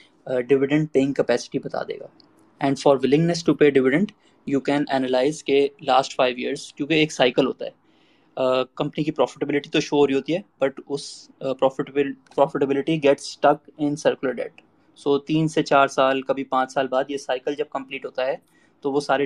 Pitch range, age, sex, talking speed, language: 135-150 Hz, 20-39, male, 185 wpm, Urdu